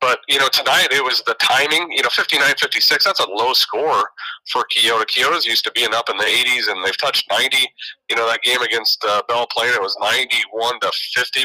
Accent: American